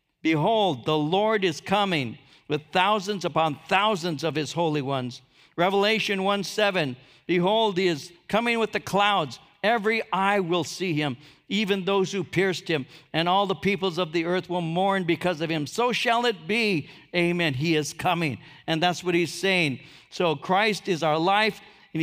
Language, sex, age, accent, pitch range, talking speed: English, male, 60-79, American, 145-185 Hz, 170 wpm